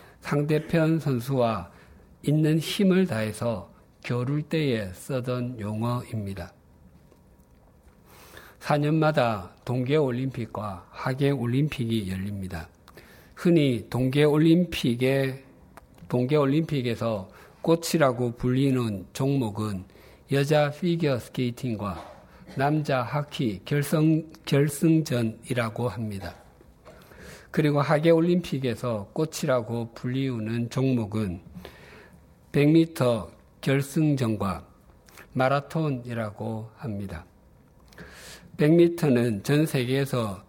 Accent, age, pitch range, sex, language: native, 50-69, 110-150 Hz, male, Korean